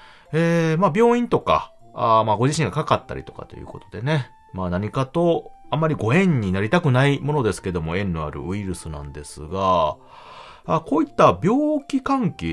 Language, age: Japanese, 40-59